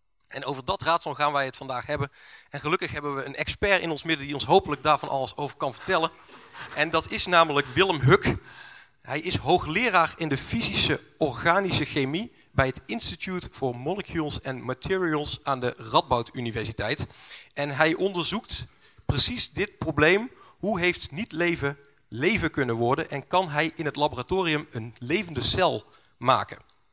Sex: male